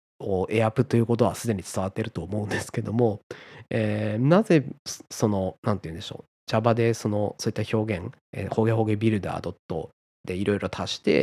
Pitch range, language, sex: 105-155 Hz, Japanese, male